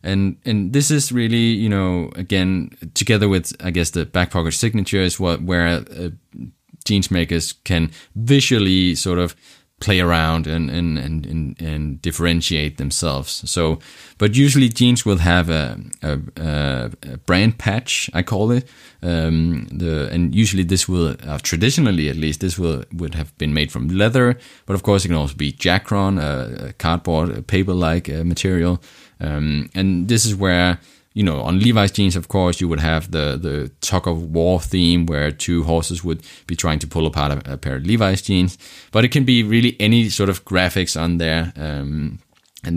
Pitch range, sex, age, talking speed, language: 80-100 Hz, male, 20-39, 180 wpm, English